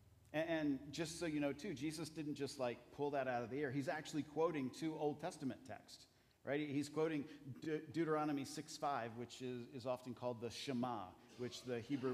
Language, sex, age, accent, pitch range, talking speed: English, male, 50-69, American, 120-150 Hz, 200 wpm